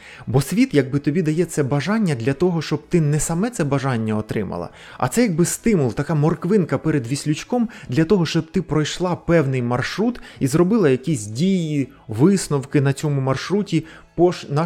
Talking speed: 165 wpm